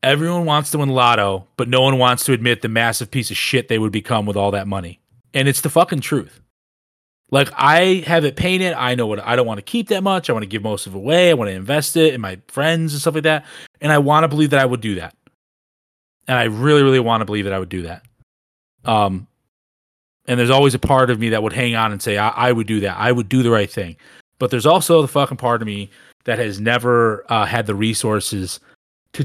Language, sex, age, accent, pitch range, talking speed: English, male, 30-49, American, 105-140 Hz, 260 wpm